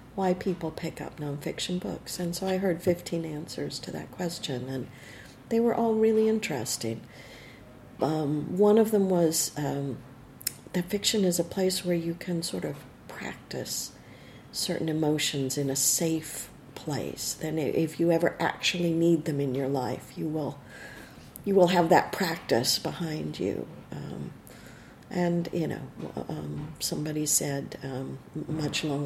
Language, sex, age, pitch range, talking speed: English, female, 50-69, 135-170 Hz, 150 wpm